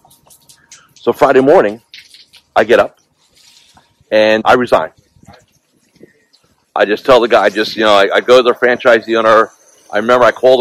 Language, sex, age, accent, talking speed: English, male, 40-59, American, 165 wpm